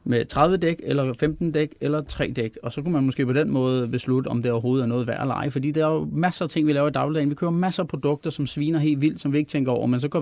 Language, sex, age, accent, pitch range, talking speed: Danish, male, 30-49, native, 125-150 Hz, 315 wpm